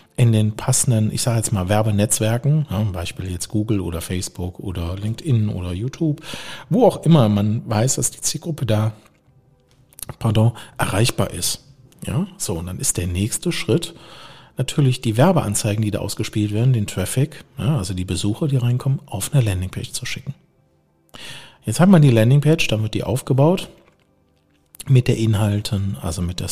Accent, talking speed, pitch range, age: German, 165 wpm, 100-130 Hz, 40-59